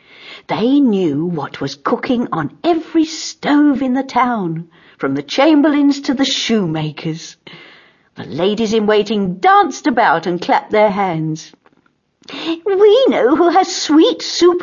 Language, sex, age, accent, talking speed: English, female, 60-79, British, 125 wpm